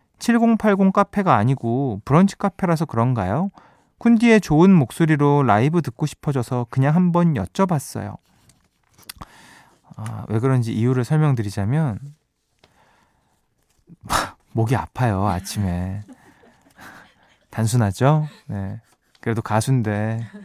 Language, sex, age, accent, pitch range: Korean, male, 20-39, native, 110-180 Hz